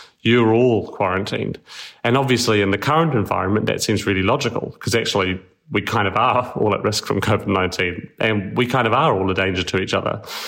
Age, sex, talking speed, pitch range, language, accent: 30-49, male, 200 wpm, 100-120 Hz, English, British